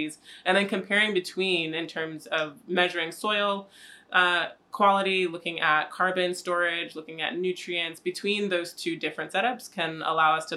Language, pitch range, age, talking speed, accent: English, 160-185 Hz, 20-39, 155 wpm, American